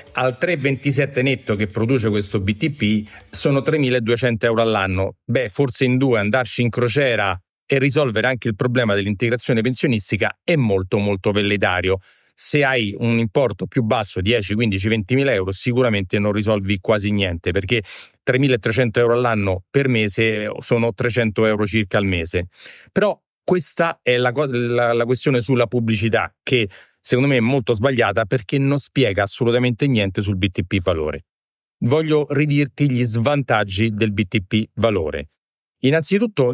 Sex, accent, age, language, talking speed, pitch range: male, native, 40-59, Italian, 145 wpm, 105-135 Hz